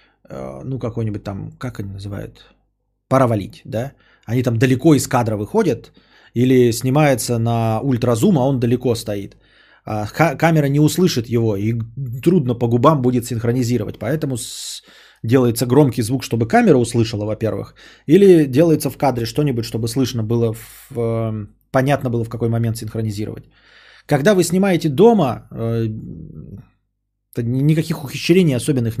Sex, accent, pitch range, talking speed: male, native, 105-135 Hz, 130 wpm